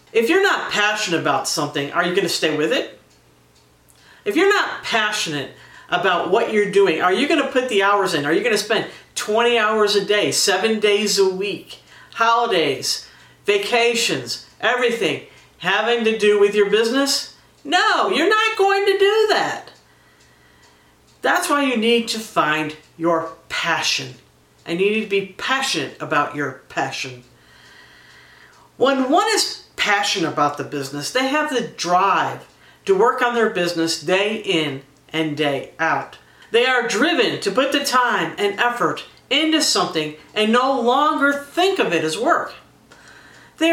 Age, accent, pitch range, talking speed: 50-69, American, 160-270 Hz, 160 wpm